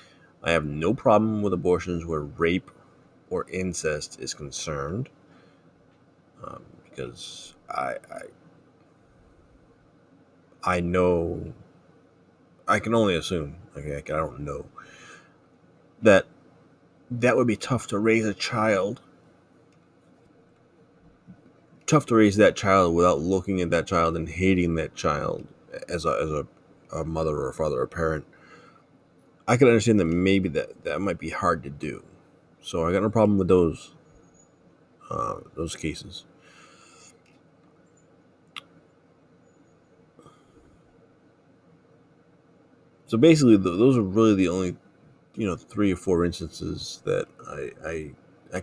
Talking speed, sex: 125 wpm, male